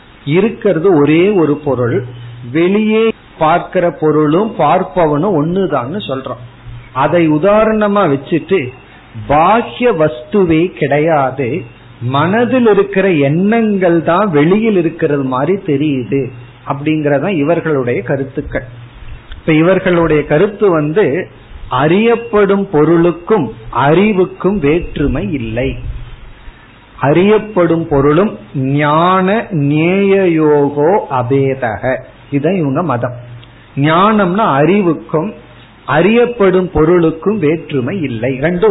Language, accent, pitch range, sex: Tamil, native, 135-190 Hz, male